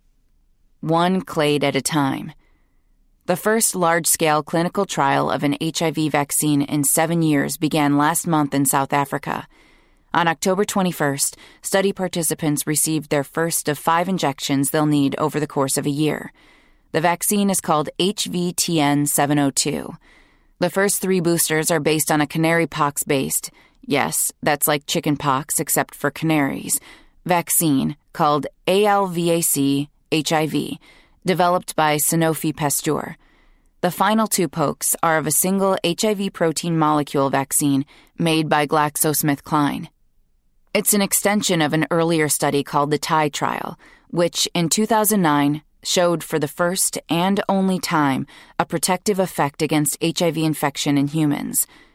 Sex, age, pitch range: female, 30-49, 145-175 Hz